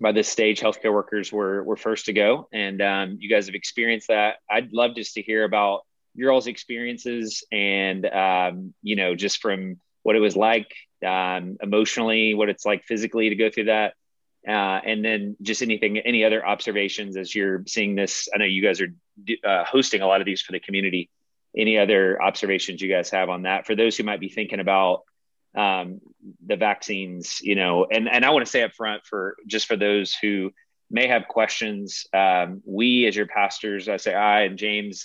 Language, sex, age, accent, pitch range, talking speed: English, male, 30-49, American, 95-110 Hz, 200 wpm